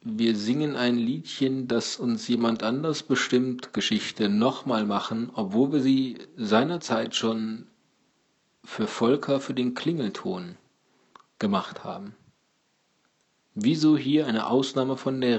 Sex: male